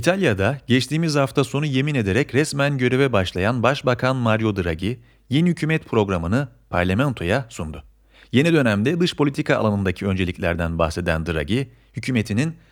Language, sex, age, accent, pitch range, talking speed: Turkish, male, 40-59, native, 95-145 Hz, 125 wpm